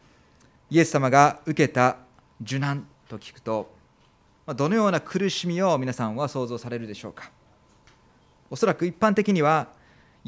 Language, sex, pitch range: Japanese, male, 125-175 Hz